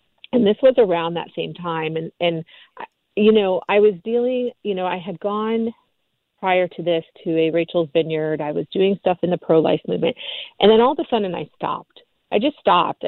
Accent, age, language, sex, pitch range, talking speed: American, 40-59, English, female, 170-210 Hz, 205 wpm